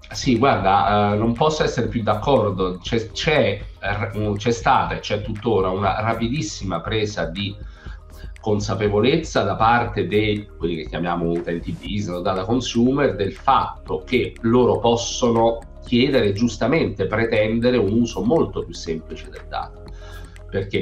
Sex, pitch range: male, 85-110 Hz